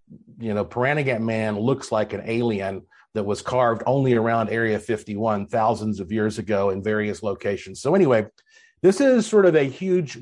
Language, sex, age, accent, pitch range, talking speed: English, male, 50-69, American, 110-155 Hz, 175 wpm